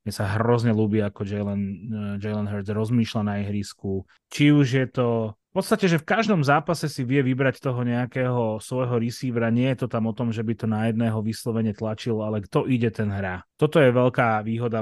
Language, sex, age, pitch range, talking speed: Slovak, male, 30-49, 110-130 Hz, 205 wpm